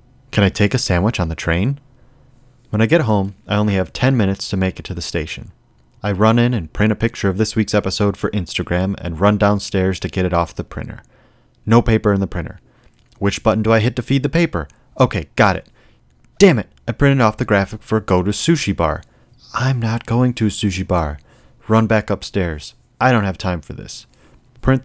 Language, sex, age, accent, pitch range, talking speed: English, male, 30-49, American, 95-120 Hz, 220 wpm